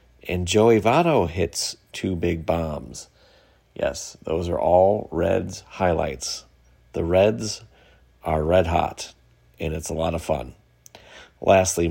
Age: 40-59